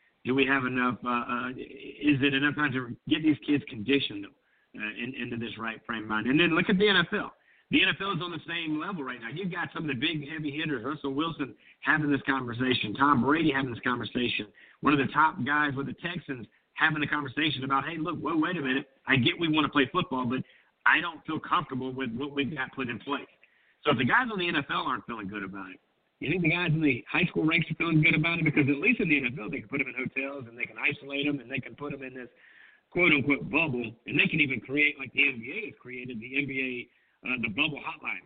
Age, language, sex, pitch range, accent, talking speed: 50-69, English, male, 125-155 Hz, American, 250 wpm